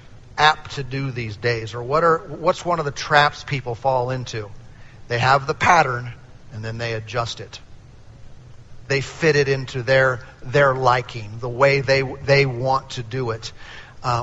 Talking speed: 170 wpm